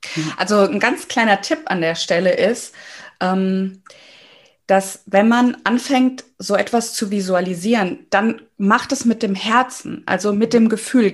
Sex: female